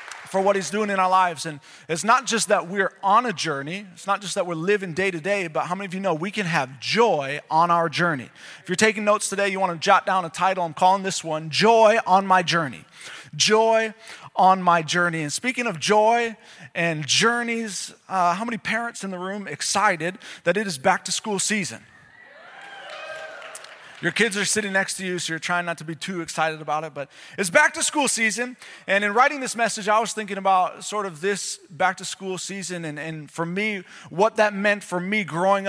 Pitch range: 170-215 Hz